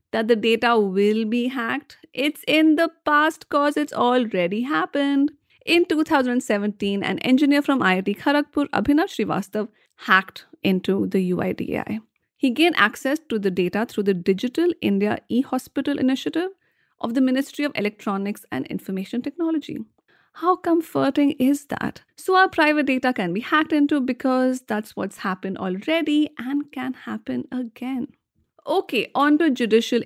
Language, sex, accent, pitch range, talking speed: English, female, Indian, 205-290 Hz, 145 wpm